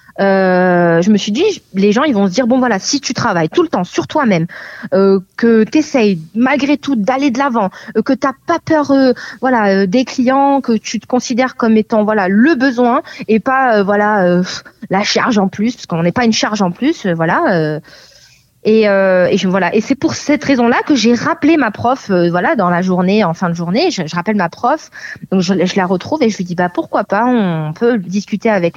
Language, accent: French, French